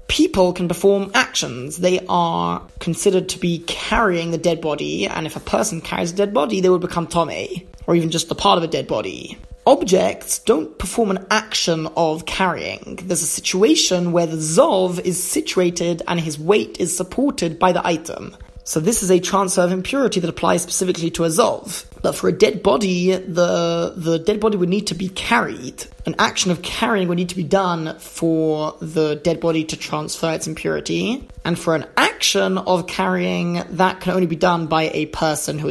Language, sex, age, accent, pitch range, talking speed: English, male, 20-39, British, 160-190 Hz, 195 wpm